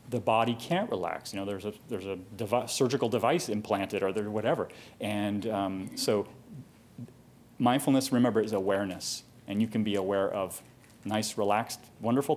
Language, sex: English, male